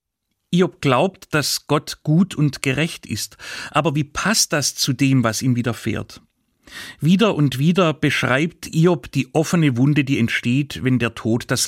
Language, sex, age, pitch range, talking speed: German, male, 30-49, 115-155 Hz, 160 wpm